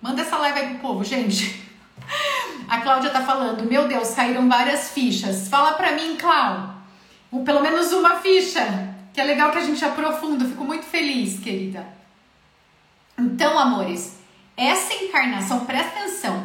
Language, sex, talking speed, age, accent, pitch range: Portuguese, female, 150 wpm, 40-59, Brazilian, 205-290 Hz